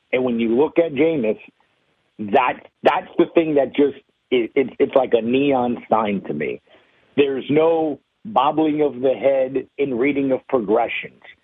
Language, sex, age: English, male, 50-69